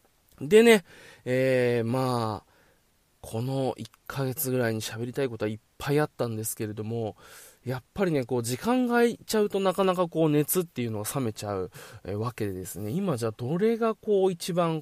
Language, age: Japanese, 20-39